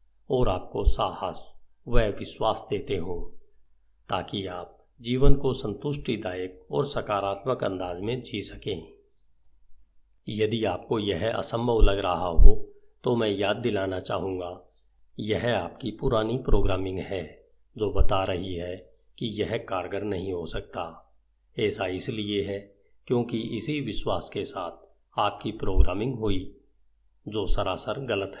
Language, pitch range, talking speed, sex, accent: Hindi, 95-130 Hz, 125 wpm, male, native